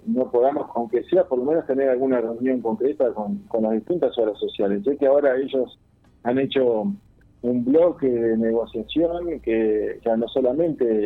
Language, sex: Spanish, male